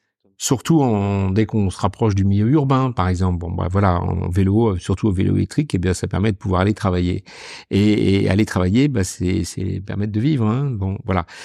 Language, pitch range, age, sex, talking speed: French, 95-125 Hz, 50-69, male, 220 wpm